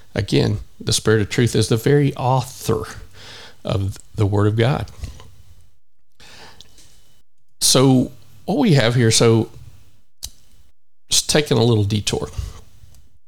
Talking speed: 115 wpm